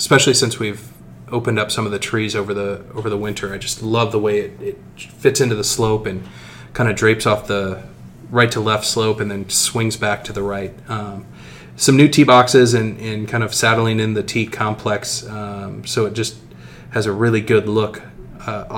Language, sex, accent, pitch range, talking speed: English, male, American, 105-115 Hz, 210 wpm